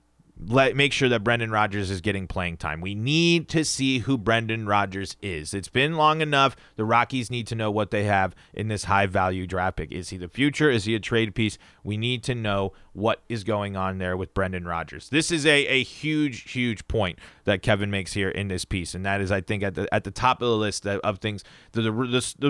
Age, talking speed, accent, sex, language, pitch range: 30-49, 235 wpm, American, male, English, 100-140 Hz